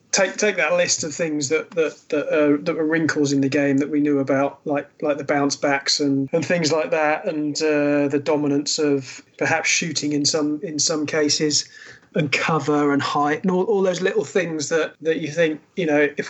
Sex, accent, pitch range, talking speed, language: male, British, 145-160 Hz, 215 wpm, English